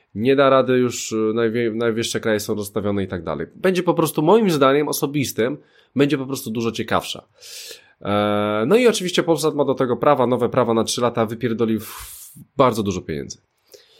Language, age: Polish, 20-39